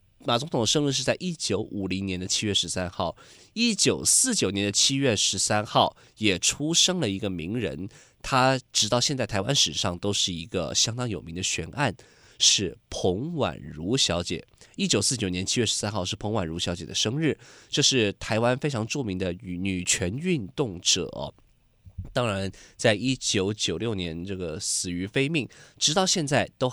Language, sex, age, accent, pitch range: Chinese, male, 20-39, native, 95-130 Hz